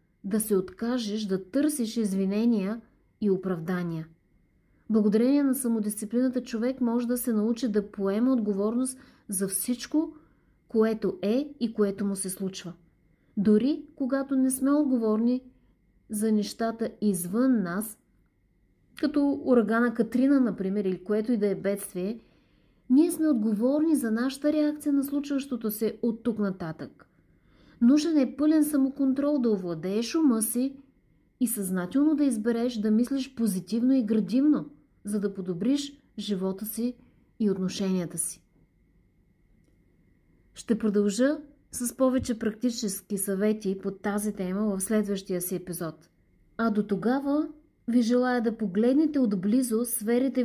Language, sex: Bulgarian, female